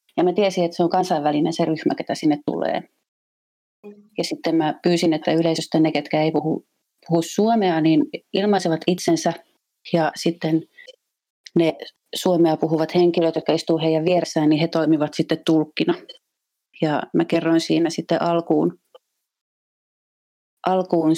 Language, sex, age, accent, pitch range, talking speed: Finnish, female, 30-49, native, 160-185 Hz, 140 wpm